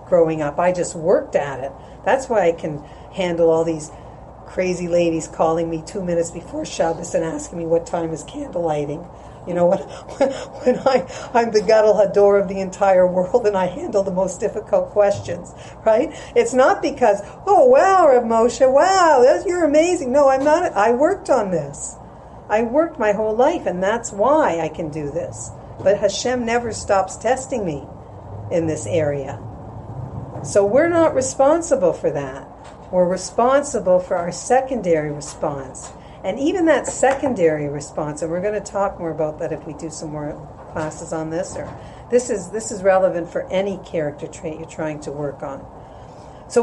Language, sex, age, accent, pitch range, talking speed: English, female, 50-69, American, 165-265 Hz, 180 wpm